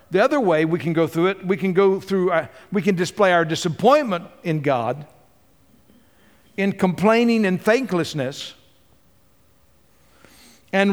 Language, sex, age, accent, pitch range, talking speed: English, male, 60-79, American, 135-190 Hz, 130 wpm